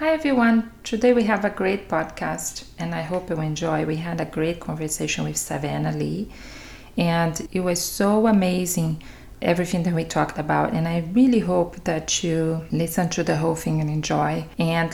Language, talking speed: English, 180 wpm